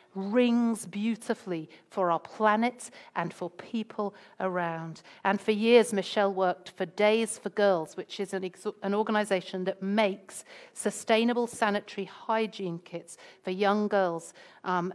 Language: English